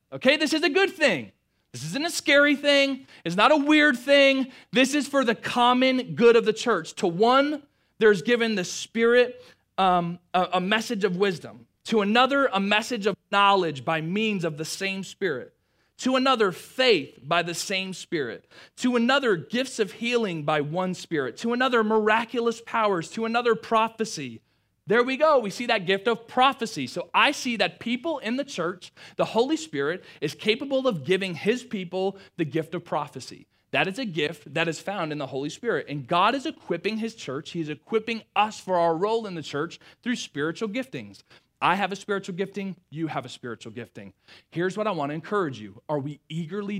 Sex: male